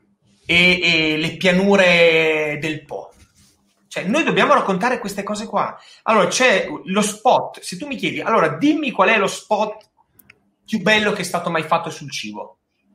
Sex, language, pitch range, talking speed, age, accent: male, Italian, 140-195 Hz, 160 wpm, 30-49, native